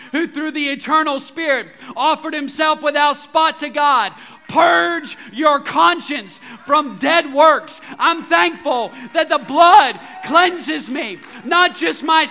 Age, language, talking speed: 40-59, English, 130 wpm